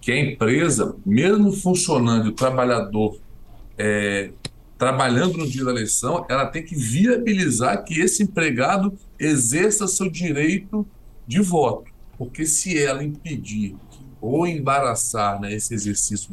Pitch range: 120-170 Hz